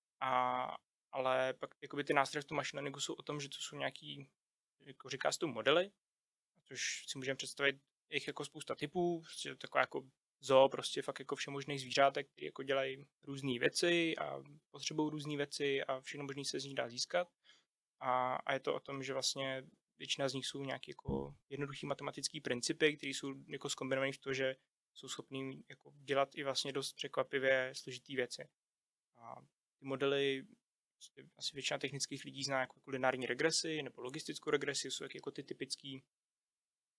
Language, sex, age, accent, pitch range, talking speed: Czech, male, 20-39, native, 130-145 Hz, 175 wpm